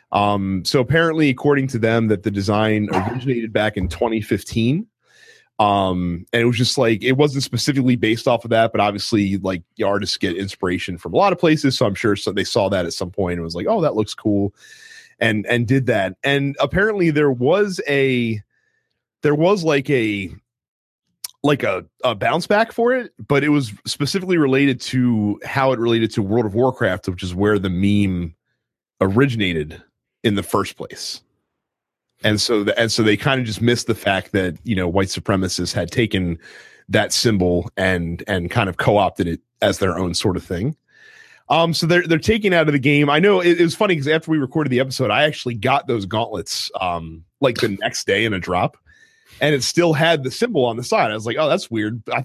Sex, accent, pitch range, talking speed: male, American, 100-145 Hz, 205 wpm